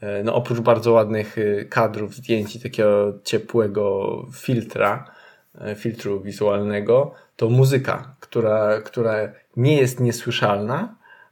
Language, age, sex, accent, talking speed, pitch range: Polish, 20-39, male, native, 95 wpm, 105-120 Hz